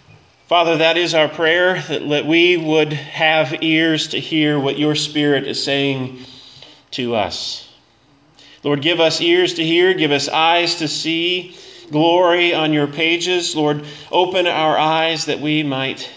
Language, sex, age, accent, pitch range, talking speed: English, male, 30-49, American, 115-155 Hz, 150 wpm